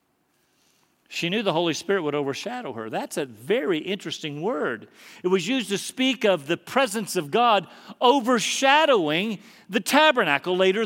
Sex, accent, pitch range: male, American, 170-230 Hz